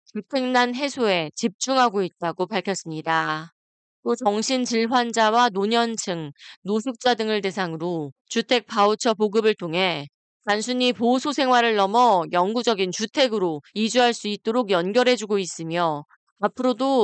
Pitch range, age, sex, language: 185-245 Hz, 20-39, female, Korean